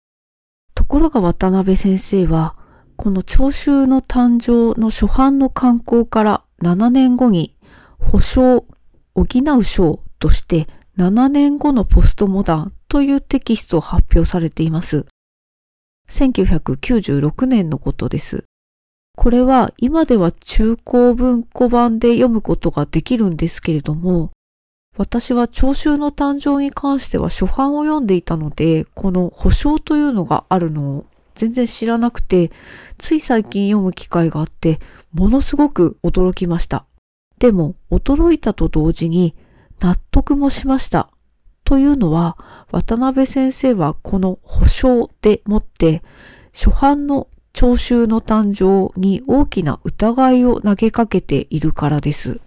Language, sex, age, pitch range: Japanese, female, 40-59, 170-255 Hz